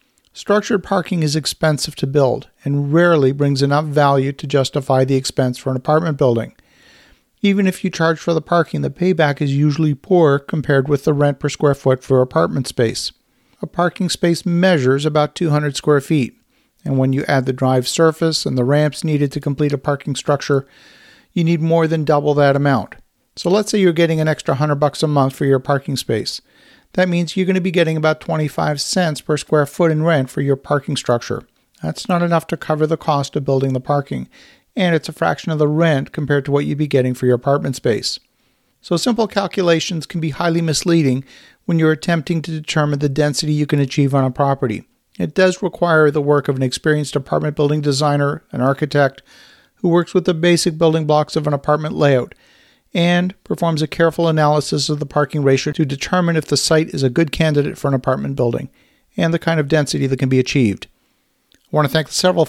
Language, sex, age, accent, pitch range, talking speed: English, male, 50-69, American, 135-165 Hz, 205 wpm